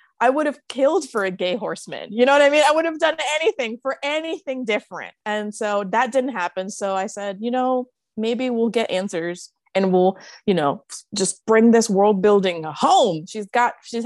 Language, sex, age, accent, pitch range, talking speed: English, female, 20-39, American, 190-255 Hz, 205 wpm